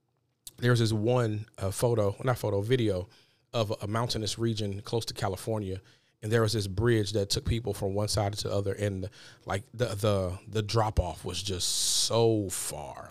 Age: 40-59